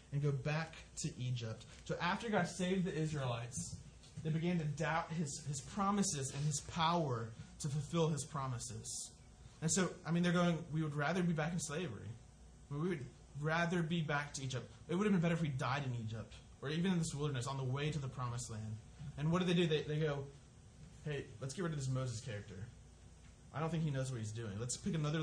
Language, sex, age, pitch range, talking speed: English, male, 20-39, 135-175 Hz, 225 wpm